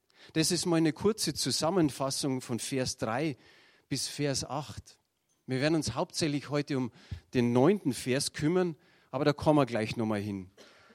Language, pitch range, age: German, 125-160 Hz, 40-59